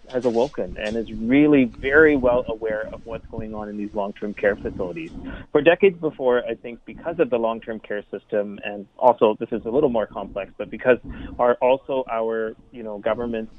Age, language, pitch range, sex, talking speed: 30-49, English, 110-125 Hz, male, 195 wpm